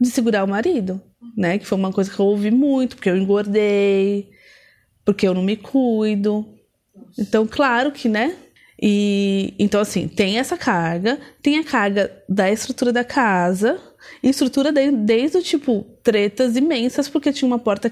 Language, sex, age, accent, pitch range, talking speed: Portuguese, female, 20-39, Brazilian, 200-280 Hz, 160 wpm